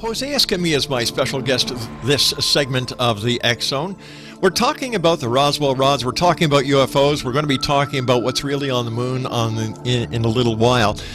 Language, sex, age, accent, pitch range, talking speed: English, male, 50-69, American, 120-165 Hz, 210 wpm